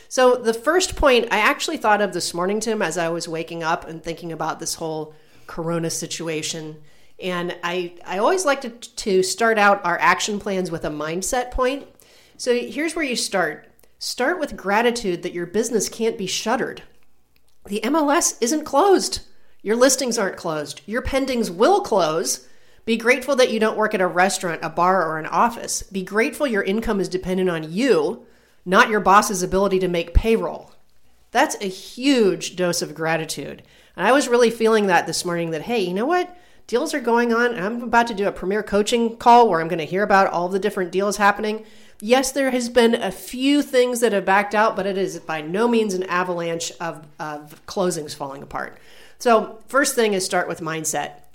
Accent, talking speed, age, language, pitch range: American, 195 wpm, 40-59, English, 175-235 Hz